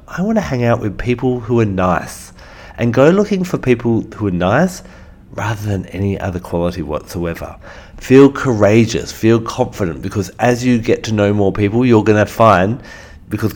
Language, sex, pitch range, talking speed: English, male, 95-115 Hz, 180 wpm